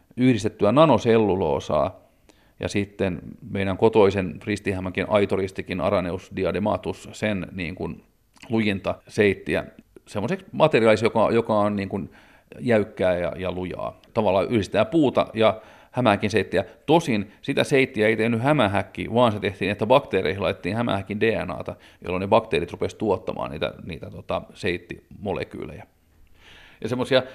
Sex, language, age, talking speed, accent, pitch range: male, Finnish, 40-59, 125 wpm, native, 100-120 Hz